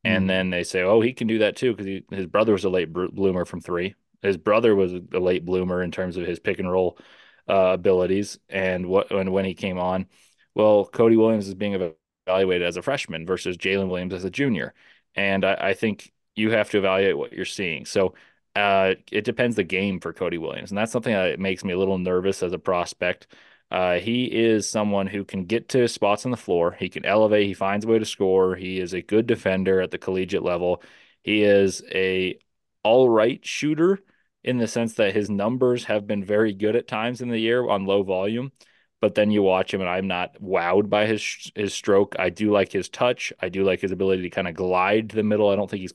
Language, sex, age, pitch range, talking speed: English, male, 20-39, 95-110 Hz, 230 wpm